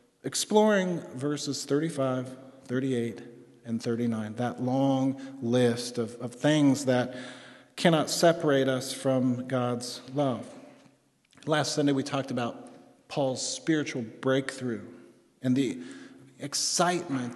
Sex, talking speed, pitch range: male, 105 wpm, 130-160 Hz